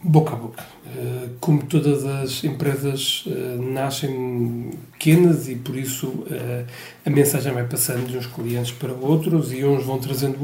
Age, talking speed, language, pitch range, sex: 40-59, 145 wpm, Portuguese, 135-155 Hz, male